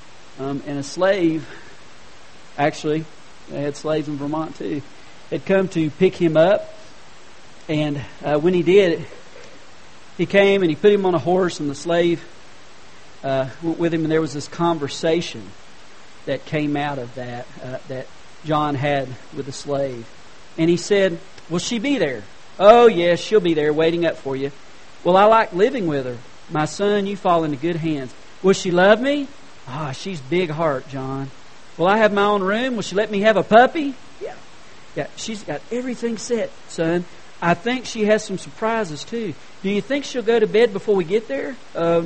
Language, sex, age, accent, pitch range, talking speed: English, male, 40-59, American, 145-195 Hz, 190 wpm